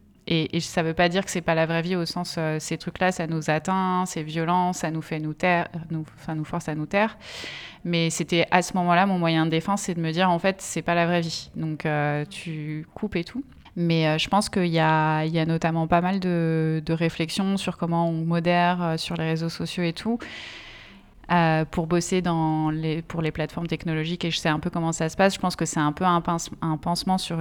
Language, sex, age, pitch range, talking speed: French, female, 20-39, 160-180 Hz, 255 wpm